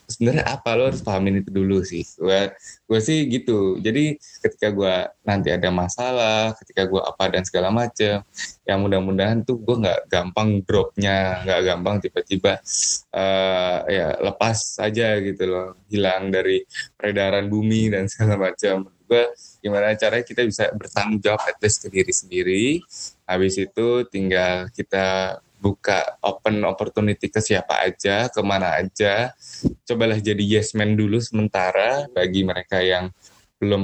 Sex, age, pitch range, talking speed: male, 20-39, 95-120 Hz, 140 wpm